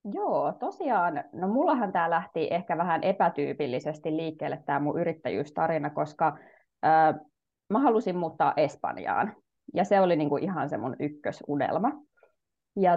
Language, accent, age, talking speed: Finnish, native, 20-39, 130 wpm